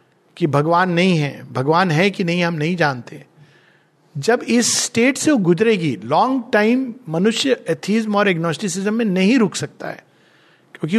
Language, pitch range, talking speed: Hindi, 155-205 Hz, 160 wpm